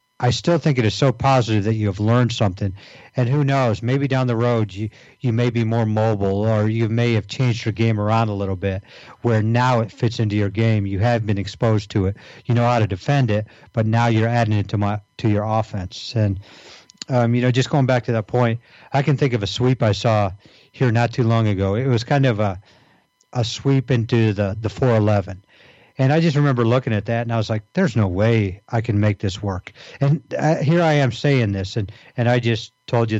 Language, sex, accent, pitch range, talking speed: English, male, American, 105-125 Hz, 240 wpm